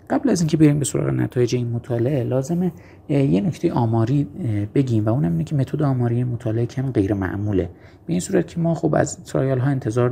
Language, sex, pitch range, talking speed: Persian, male, 110-145 Hz, 190 wpm